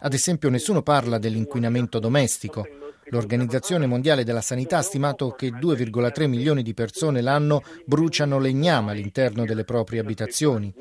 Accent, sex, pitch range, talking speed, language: native, male, 115-145 Hz, 135 wpm, Italian